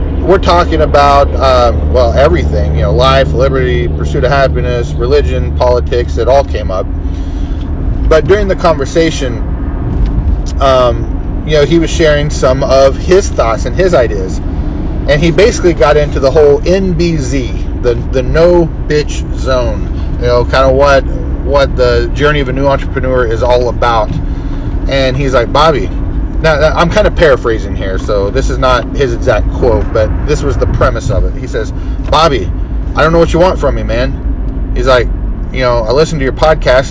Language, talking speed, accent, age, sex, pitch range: English, 175 wpm, American, 40-59, male, 90-145 Hz